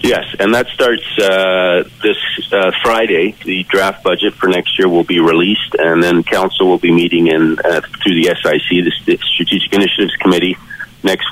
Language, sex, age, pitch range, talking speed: English, male, 40-59, 80-90 Hz, 175 wpm